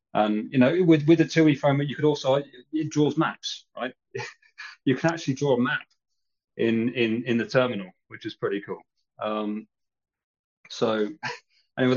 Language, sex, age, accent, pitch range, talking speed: English, male, 30-49, British, 105-130 Hz, 165 wpm